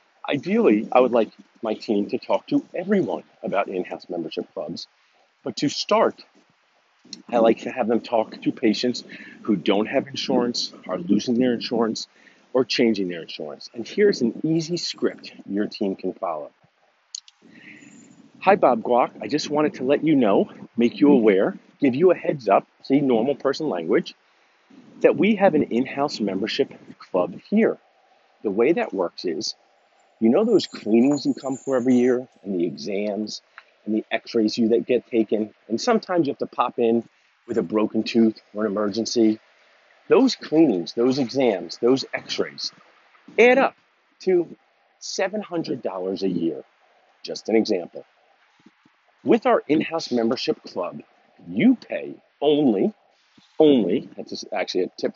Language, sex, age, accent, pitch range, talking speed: English, male, 40-59, American, 110-155 Hz, 155 wpm